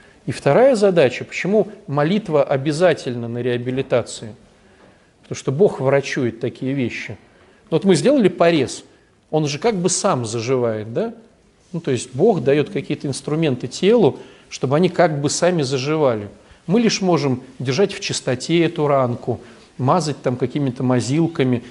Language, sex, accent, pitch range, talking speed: Russian, male, native, 125-175 Hz, 140 wpm